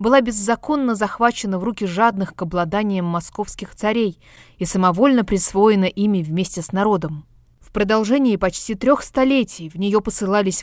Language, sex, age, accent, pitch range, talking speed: Russian, female, 20-39, native, 185-225 Hz, 140 wpm